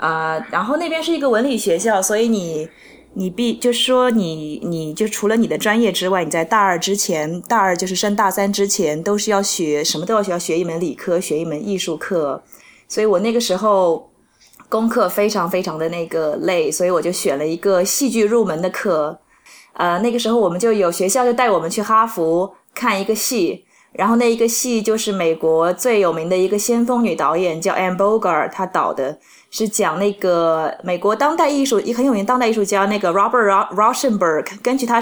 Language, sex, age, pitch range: Chinese, female, 20-39, 180-235 Hz